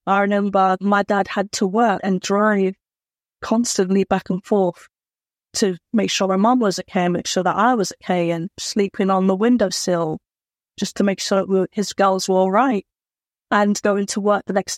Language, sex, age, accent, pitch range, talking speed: English, female, 30-49, British, 190-210 Hz, 185 wpm